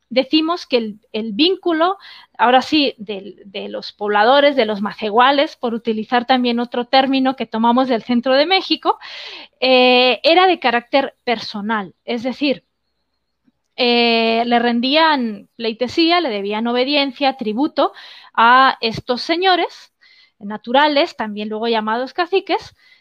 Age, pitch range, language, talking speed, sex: 20-39, 230-300 Hz, Spanish, 125 wpm, female